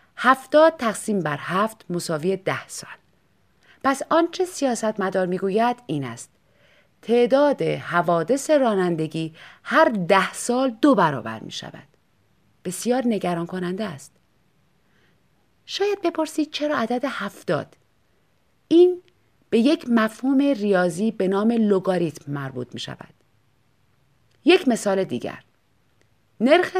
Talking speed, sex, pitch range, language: 110 wpm, female, 170-265 Hz, Persian